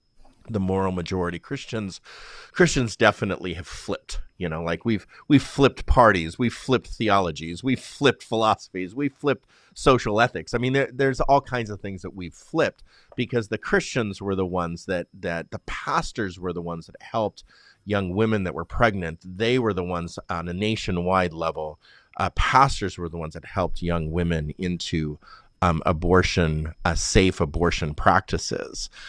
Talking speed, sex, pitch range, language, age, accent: 165 wpm, male, 85-110 Hz, English, 30-49, American